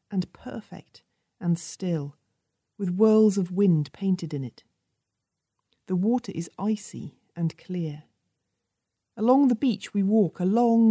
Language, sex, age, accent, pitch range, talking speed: English, female, 40-59, British, 160-220 Hz, 125 wpm